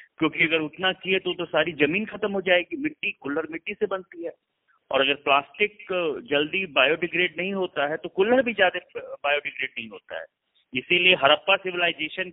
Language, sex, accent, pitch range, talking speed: Hindi, male, native, 145-200 Hz, 175 wpm